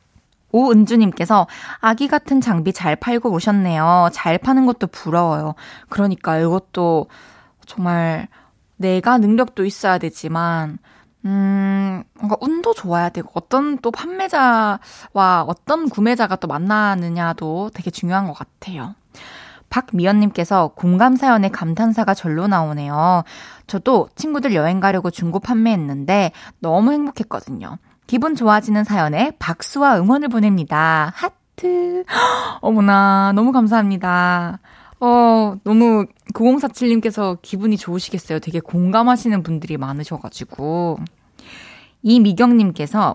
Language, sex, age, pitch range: Korean, female, 20-39, 175-240 Hz